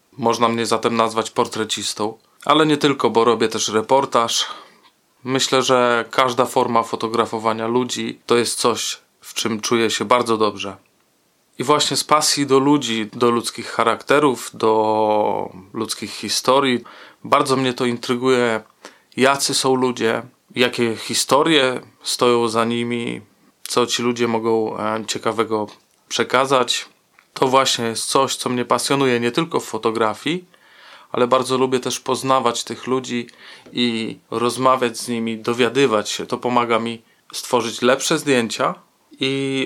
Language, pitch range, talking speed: Polish, 115-135 Hz, 135 wpm